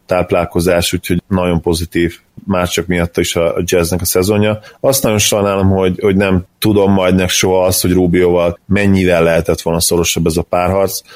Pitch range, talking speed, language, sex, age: 85-95 Hz, 165 wpm, Hungarian, male, 30-49